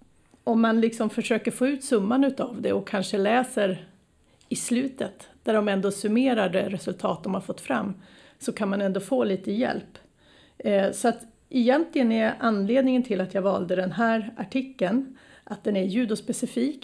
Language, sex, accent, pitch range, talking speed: Swedish, female, native, 195-240 Hz, 170 wpm